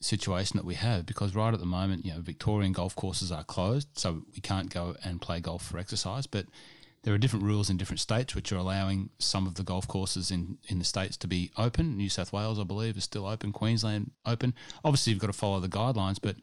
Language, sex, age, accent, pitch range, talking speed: English, male, 30-49, Australian, 95-110 Hz, 240 wpm